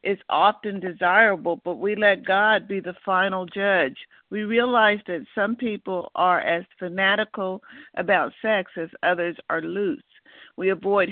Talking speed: 145 wpm